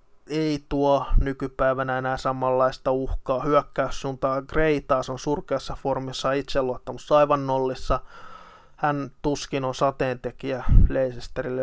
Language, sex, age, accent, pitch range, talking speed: Finnish, male, 20-39, native, 130-145 Hz, 100 wpm